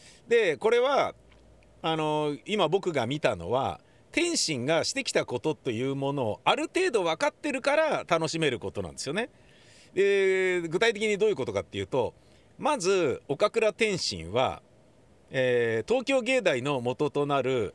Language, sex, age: Japanese, male, 50-69